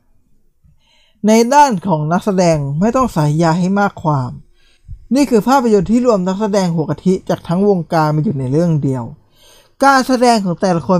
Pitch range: 145-210 Hz